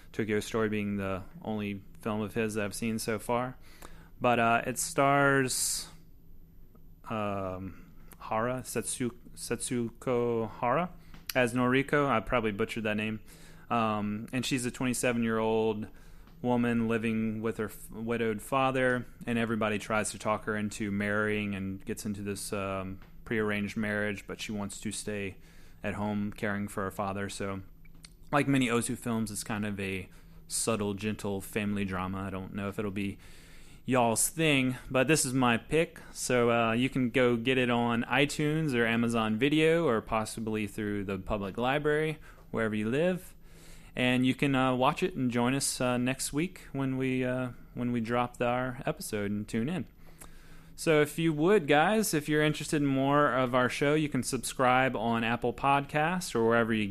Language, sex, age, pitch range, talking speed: English, male, 20-39, 105-130 Hz, 165 wpm